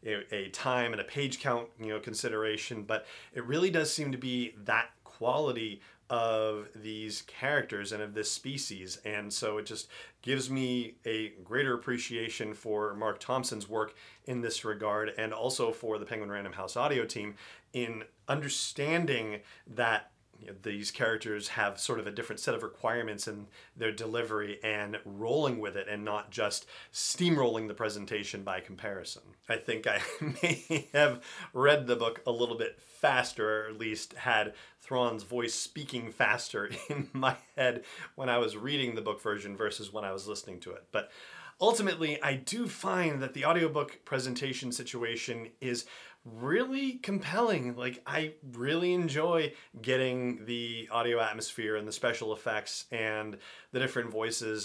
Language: English